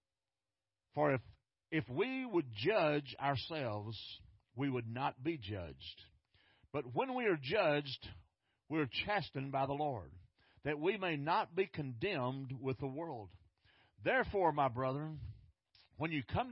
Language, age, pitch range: English, 50-69, 105-140 Hz